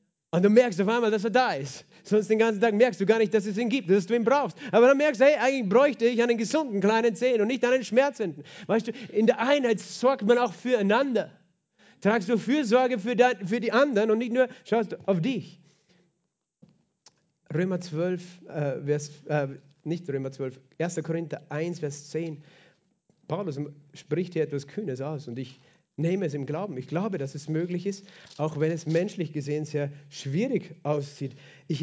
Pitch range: 155-220 Hz